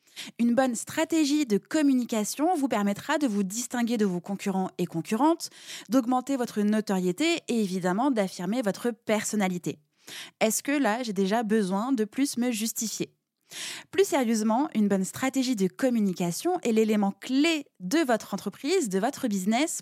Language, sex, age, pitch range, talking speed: French, female, 20-39, 195-260 Hz, 150 wpm